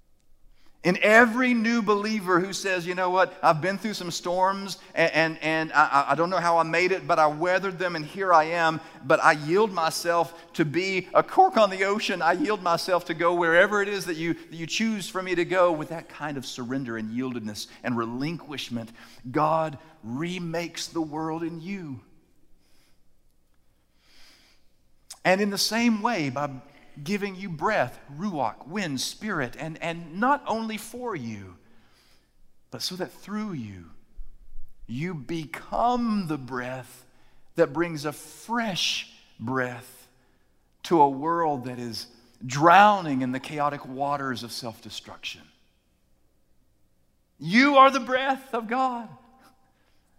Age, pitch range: 40-59, 125-185 Hz